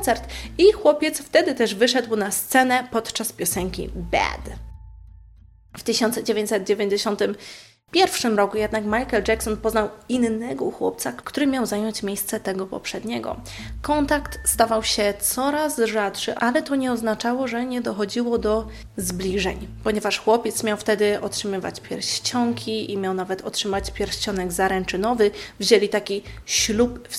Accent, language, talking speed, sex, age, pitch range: native, Polish, 125 wpm, female, 20-39, 205-240 Hz